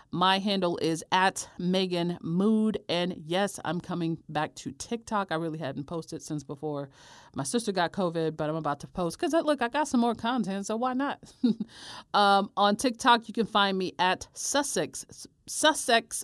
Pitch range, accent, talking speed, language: 155-215 Hz, American, 180 wpm, English